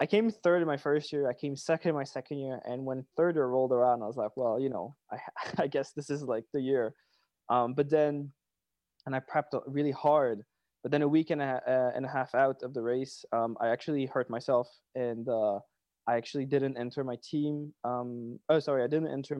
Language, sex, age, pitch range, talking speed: English, male, 20-39, 120-145 Hz, 230 wpm